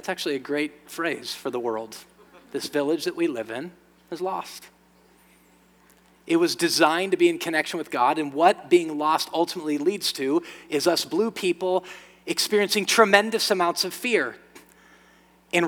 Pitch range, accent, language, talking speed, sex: 135-190 Hz, American, English, 160 wpm, male